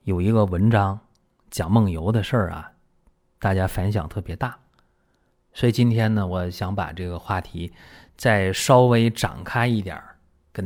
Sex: male